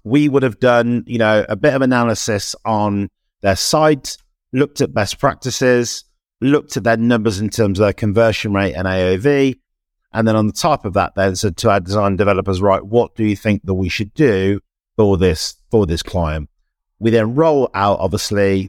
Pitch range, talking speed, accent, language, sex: 100-125 Hz, 195 wpm, British, English, male